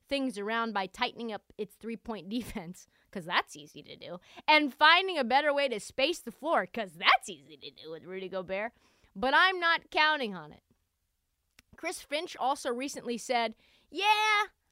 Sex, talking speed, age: female, 170 wpm, 30-49